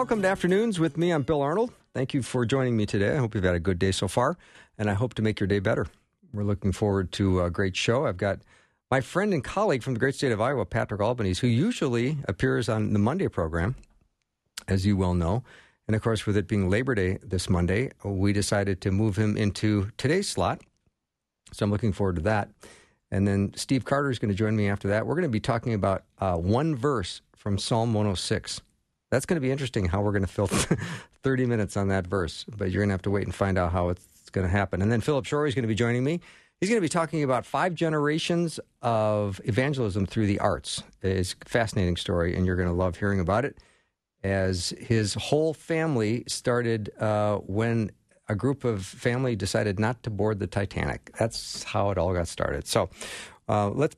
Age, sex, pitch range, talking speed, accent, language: 50-69, male, 100-130 Hz, 225 wpm, American, English